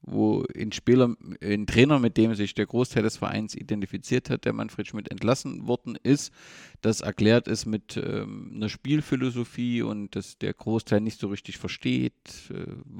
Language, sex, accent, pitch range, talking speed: German, male, German, 105-125 Hz, 165 wpm